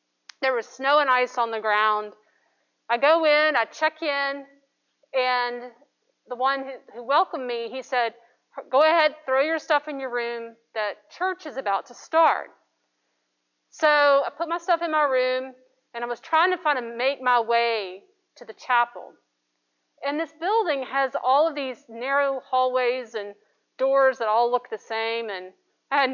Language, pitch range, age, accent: English, 230-295 Hz, 40-59, American